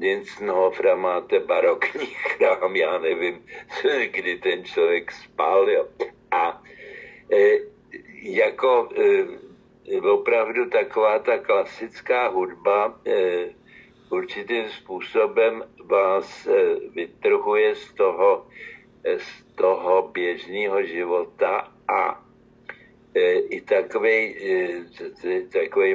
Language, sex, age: Slovak, male, 60-79